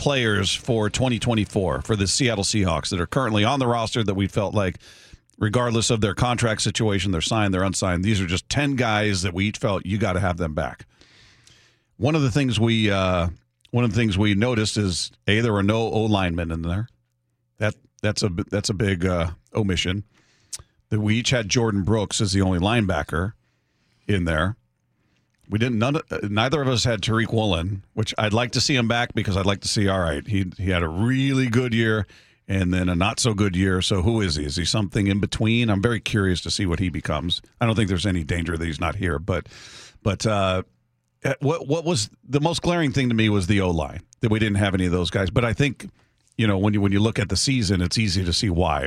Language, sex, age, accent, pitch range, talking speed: English, male, 40-59, American, 95-115 Hz, 230 wpm